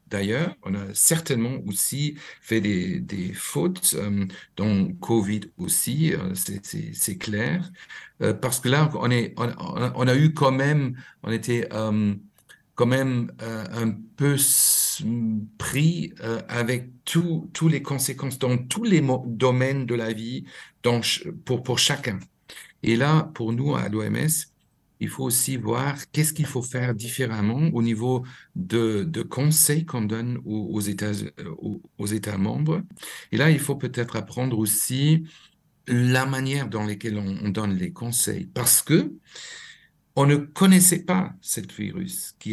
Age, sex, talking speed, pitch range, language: 50-69, male, 155 wpm, 110-150 Hz, French